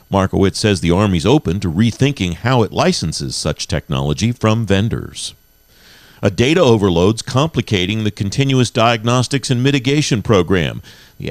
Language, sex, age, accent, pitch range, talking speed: English, male, 50-69, American, 95-125 Hz, 135 wpm